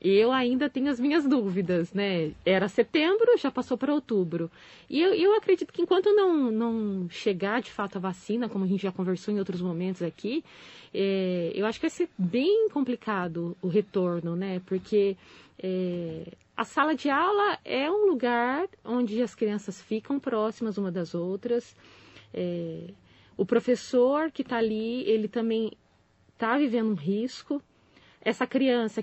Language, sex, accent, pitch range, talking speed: Portuguese, female, Brazilian, 195-255 Hz, 155 wpm